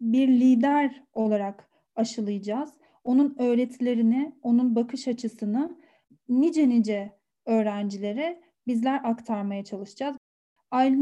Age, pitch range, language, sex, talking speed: 40-59, 225-280 Hz, Turkish, female, 85 wpm